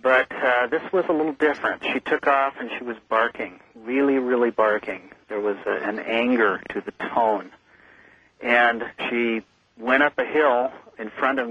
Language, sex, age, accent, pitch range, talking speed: English, male, 50-69, American, 110-130 Hz, 170 wpm